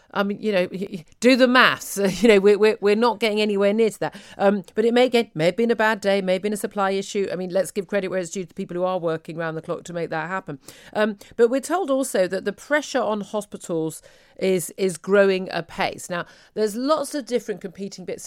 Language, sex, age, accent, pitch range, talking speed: English, female, 40-59, British, 165-205 Hz, 245 wpm